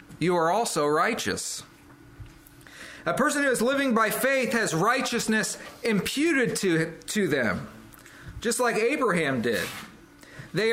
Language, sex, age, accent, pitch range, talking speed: English, male, 40-59, American, 170-235 Hz, 125 wpm